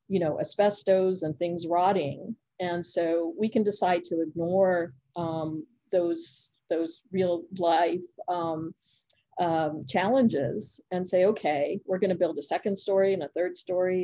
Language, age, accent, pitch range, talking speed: English, 40-59, American, 165-195 Hz, 145 wpm